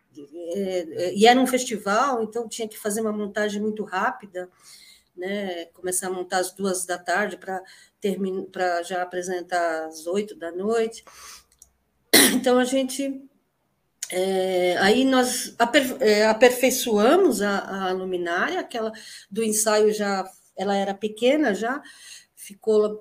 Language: Portuguese